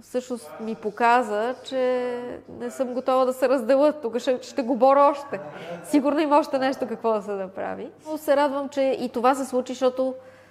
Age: 20-39